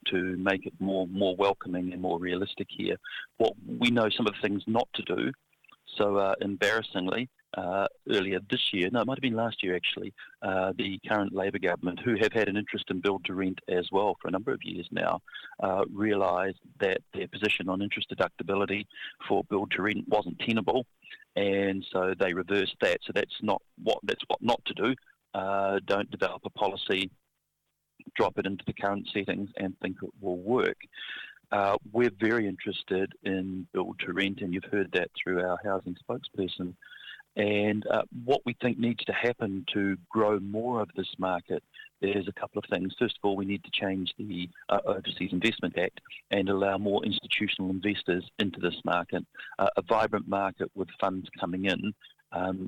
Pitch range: 95-105 Hz